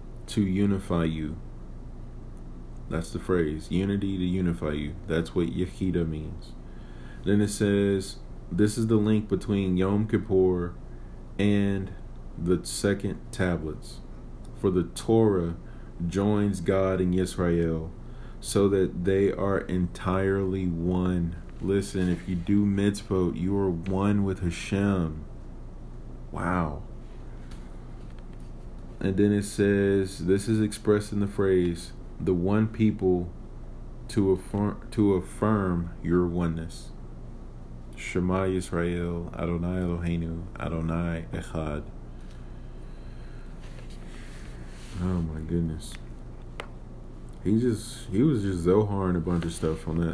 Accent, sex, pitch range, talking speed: American, male, 85-100 Hz, 110 wpm